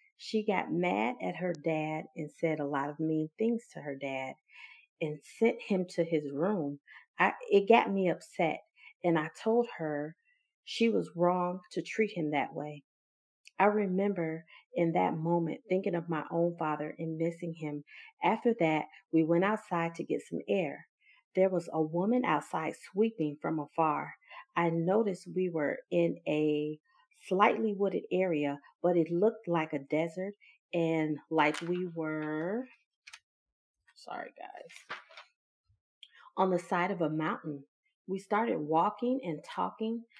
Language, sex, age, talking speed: English, female, 40-59, 150 wpm